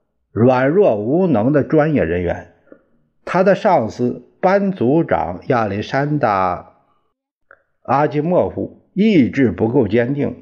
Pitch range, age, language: 105-165 Hz, 50-69, Chinese